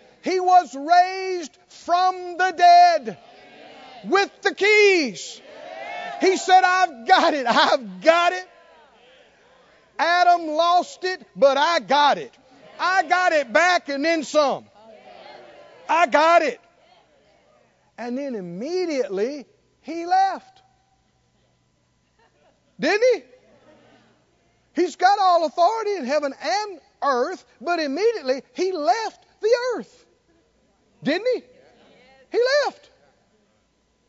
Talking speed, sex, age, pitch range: 105 wpm, male, 50-69, 245-370 Hz